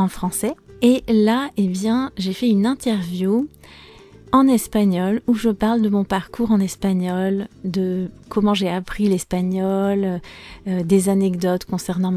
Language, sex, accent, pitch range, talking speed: French, female, French, 185-215 Hz, 150 wpm